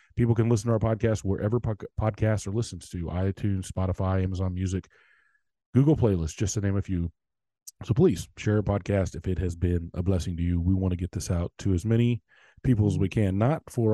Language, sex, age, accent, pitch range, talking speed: English, male, 30-49, American, 90-110 Hz, 215 wpm